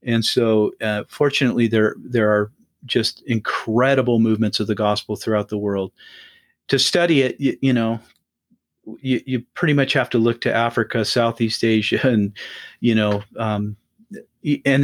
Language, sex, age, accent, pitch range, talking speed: English, male, 40-59, American, 110-130 Hz, 155 wpm